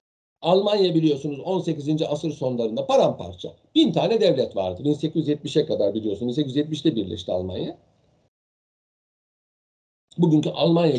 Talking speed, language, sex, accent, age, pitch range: 100 wpm, Turkish, male, native, 60-79, 150-190 Hz